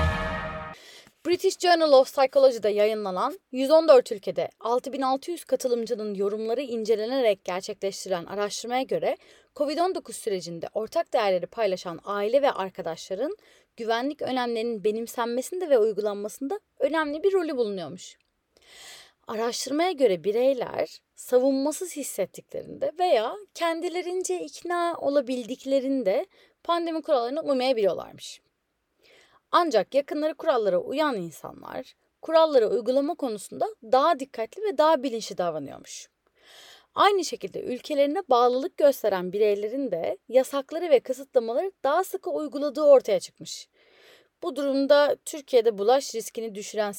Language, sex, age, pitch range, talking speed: Turkish, female, 30-49, 215-320 Hz, 100 wpm